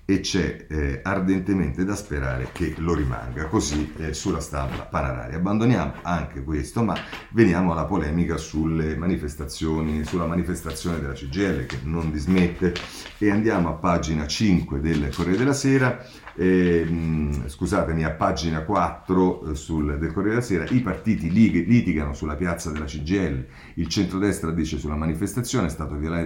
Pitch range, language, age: 75-90 Hz, Italian, 40-59